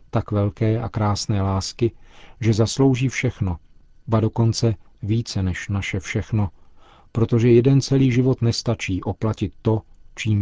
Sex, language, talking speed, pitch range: male, Czech, 125 wpm, 100-115 Hz